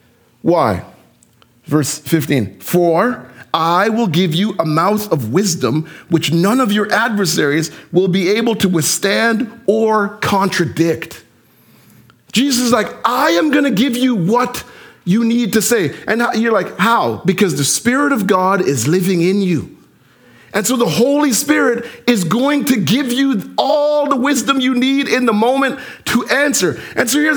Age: 40-59